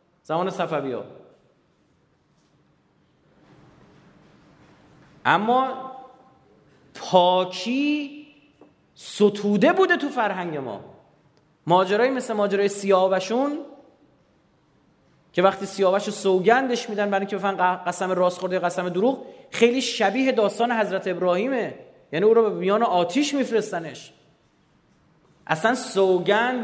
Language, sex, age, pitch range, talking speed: Persian, male, 30-49, 180-235 Hz, 90 wpm